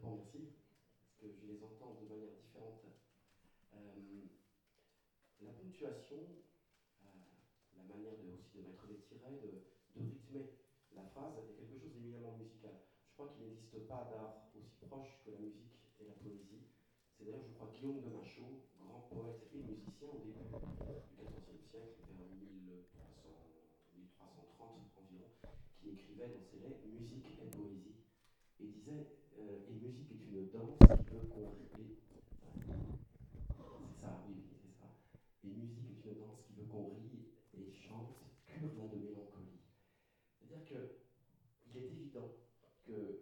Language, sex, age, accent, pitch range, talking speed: French, male, 40-59, French, 100-125 Hz, 125 wpm